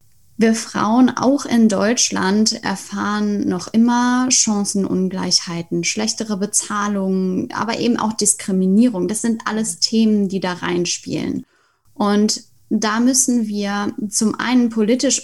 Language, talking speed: German, 115 wpm